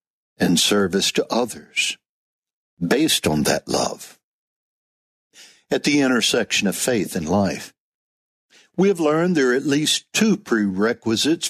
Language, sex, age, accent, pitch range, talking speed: English, male, 60-79, American, 115-145 Hz, 125 wpm